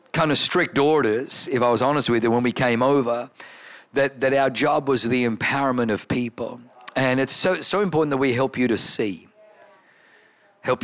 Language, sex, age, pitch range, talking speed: English, male, 50-69, 120-150 Hz, 195 wpm